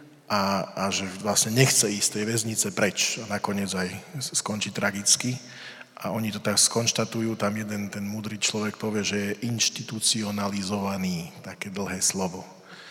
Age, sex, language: 40-59, male, Slovak